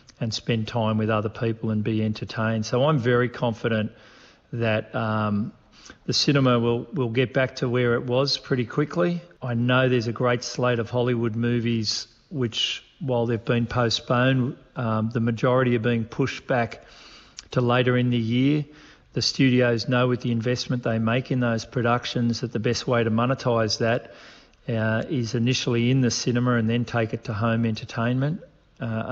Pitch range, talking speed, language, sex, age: 115-130 Hz, 175 wpm, English, male, 40-59